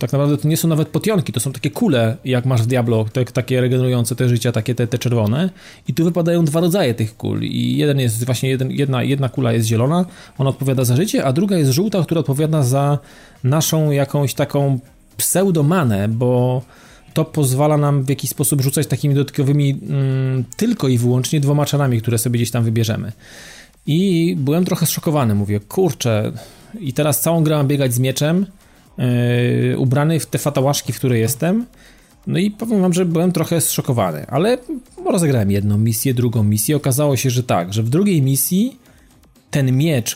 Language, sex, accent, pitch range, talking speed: Polish, male, native, 125-160 Hz, 180 wpm